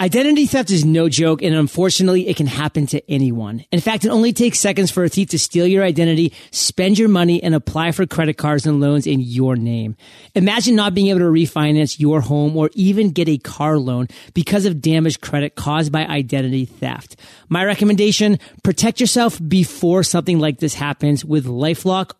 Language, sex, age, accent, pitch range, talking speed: English, male, 30-49, American, 150-190 Hz, 190 wpm